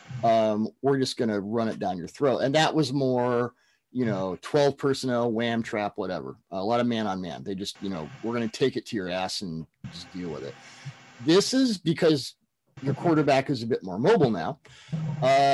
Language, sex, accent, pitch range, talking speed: English, male, American, 115-150 Hz, 210 wpm